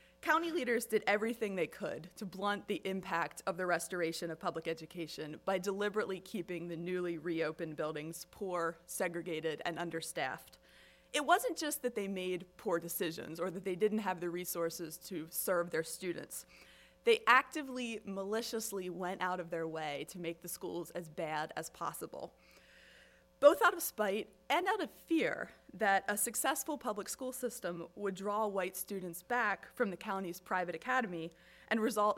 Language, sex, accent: English, female, American